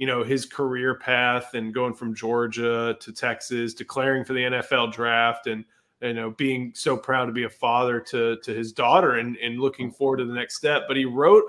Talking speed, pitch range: 215 wpm, 120-145 Hz